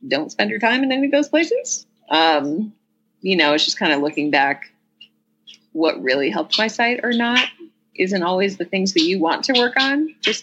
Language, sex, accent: English, female, American